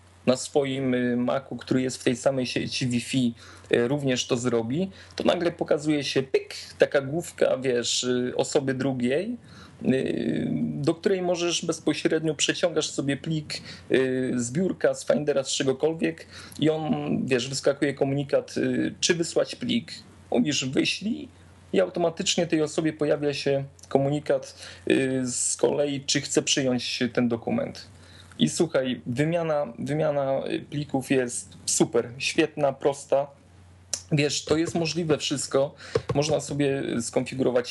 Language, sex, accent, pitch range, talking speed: Polish, male, native, 120-150 Hz, 125 wpm